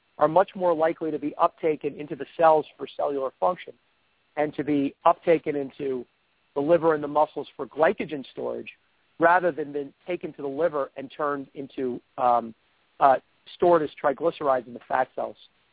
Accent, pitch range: American, 140-170 Hz